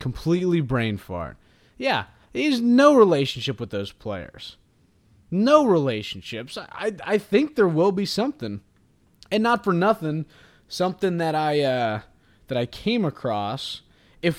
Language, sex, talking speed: English, male, 135 wpm